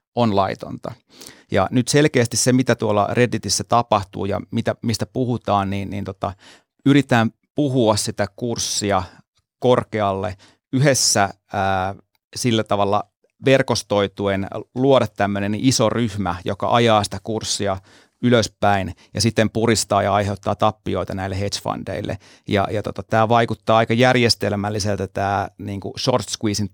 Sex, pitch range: male, 100-115 Hz